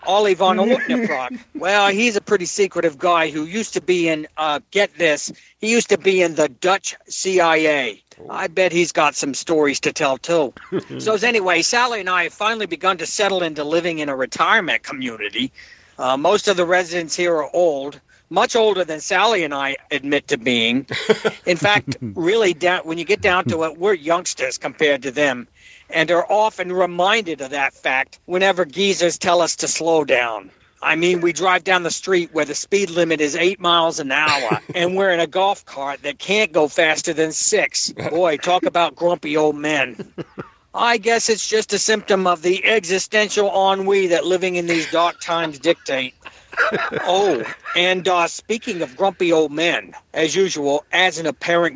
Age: 60-79